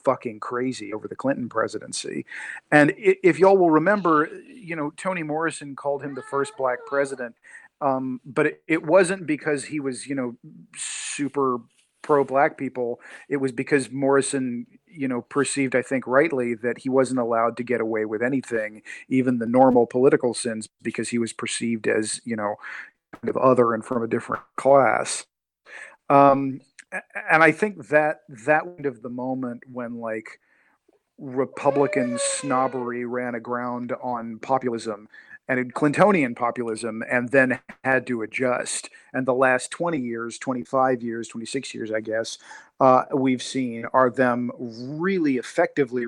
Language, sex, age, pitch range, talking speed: English, male, 40-59, 120-140 Hz, 150 wpm